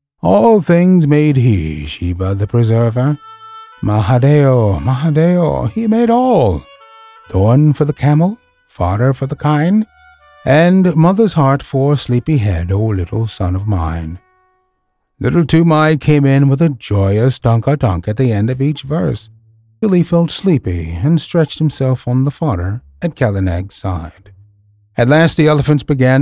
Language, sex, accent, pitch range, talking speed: English, male, American, 105-150 Hz, 150 wpm